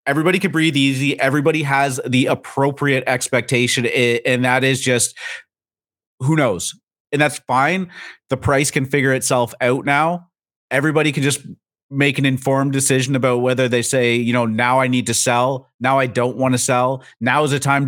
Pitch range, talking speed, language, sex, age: 120-140 Hz, 180 wpm, English, male, 30-49